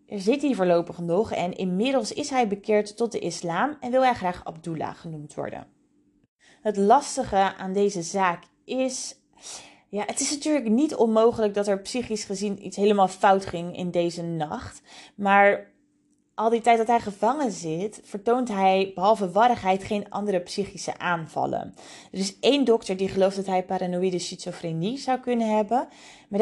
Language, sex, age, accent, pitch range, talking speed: Dutch, female, 20-39, Dutch, 180-230 Hz, 165 wpm